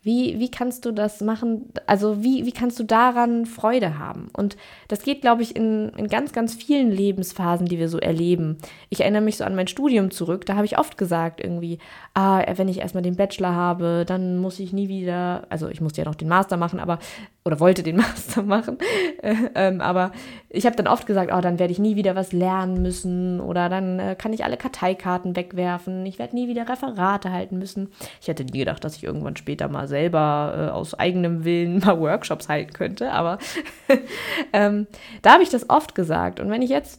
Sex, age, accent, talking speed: female, 20-39, German, 215 wpm